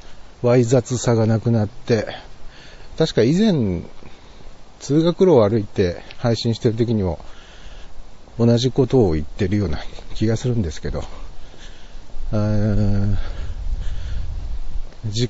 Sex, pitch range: male, 85-125 Hz